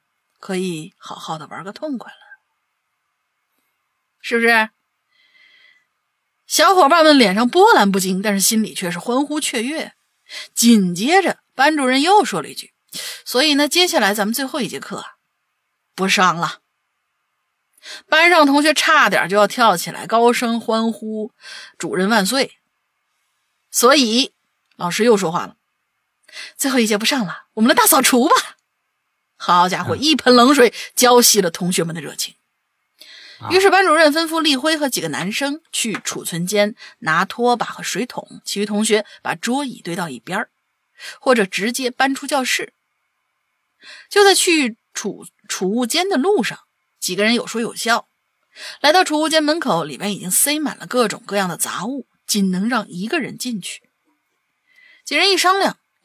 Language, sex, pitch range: Chinese, female, 205-305 Hz